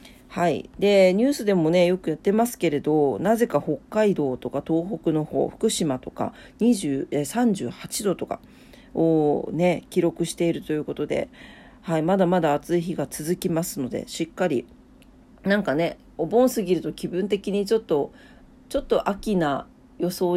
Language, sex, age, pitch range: Japanese, female, 40-59, 160-225 Hz